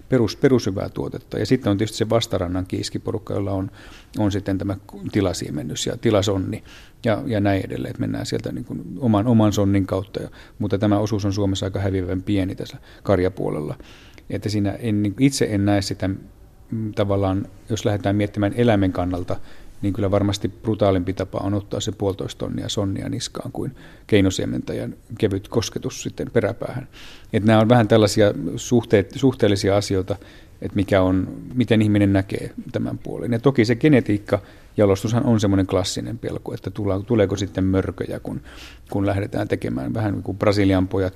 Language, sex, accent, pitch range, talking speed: Finnish, male, native, 95-110 Hz, 160 wpm